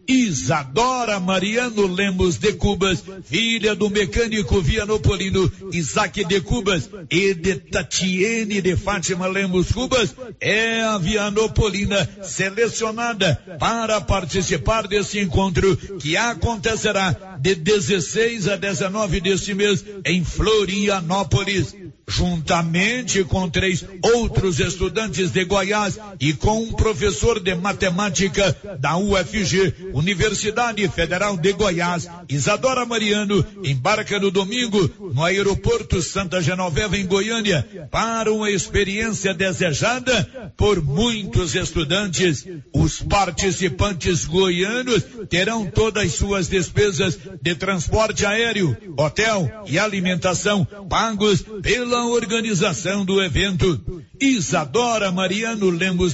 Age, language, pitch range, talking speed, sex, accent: 60-79, Portuguese, 180-210 Hz, 105 wpm, male, Brazilian